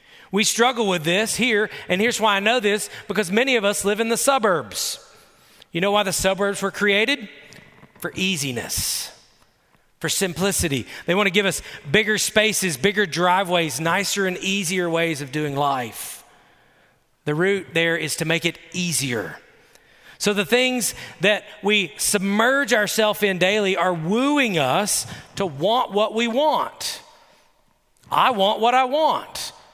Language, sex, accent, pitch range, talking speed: English, male, American, 180-245 Hz, 155 wpm